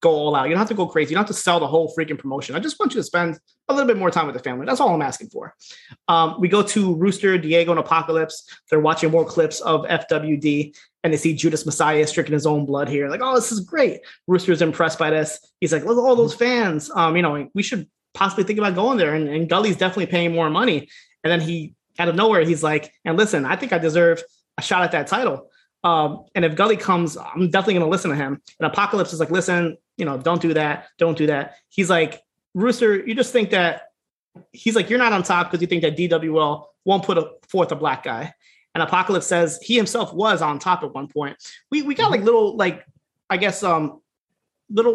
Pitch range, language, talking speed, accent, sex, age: 160-200 Hz, English, 245 wpm, American, male, 30-49